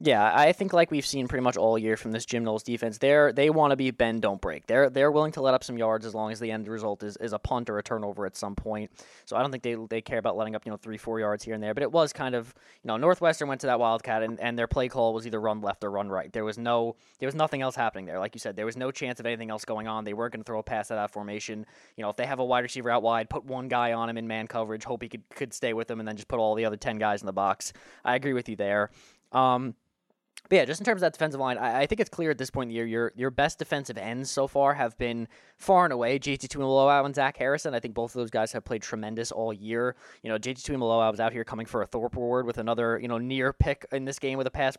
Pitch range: 110-135 Hz